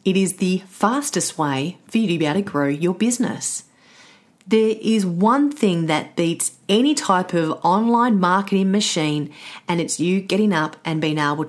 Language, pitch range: English, 165-205 Hz